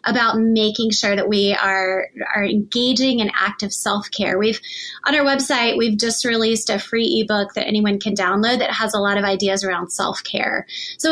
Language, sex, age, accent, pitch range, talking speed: English, female, 20-39, American, 210-260 Hz, 195 wpm